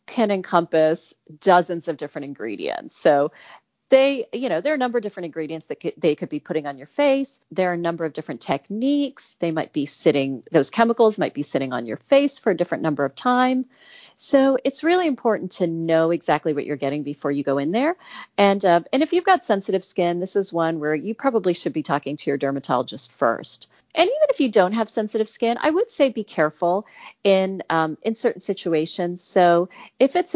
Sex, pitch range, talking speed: female, 155-235 Hz, 210 wpm